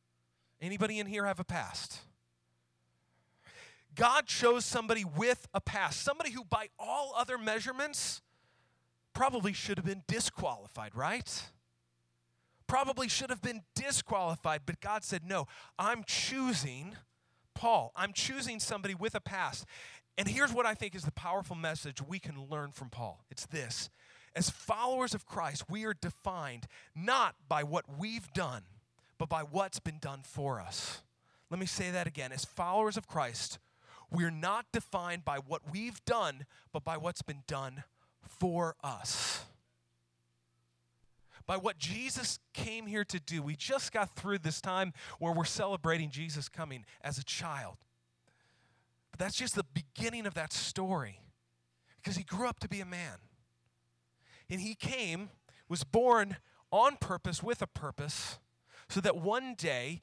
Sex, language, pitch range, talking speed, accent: male, English, 130-200 Hz, 150 wpm, American